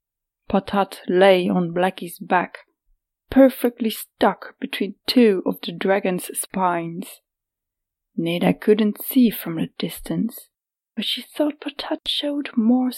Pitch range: 175-220 Hz